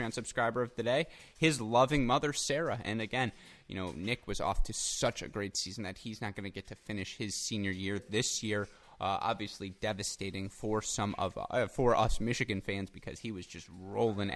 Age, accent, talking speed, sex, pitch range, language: 20-39, American, 205 wpm, male, 95-115 Hz, English